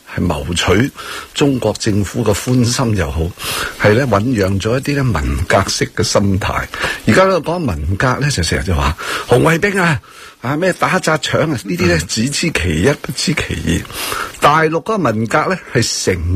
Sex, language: male, Chinese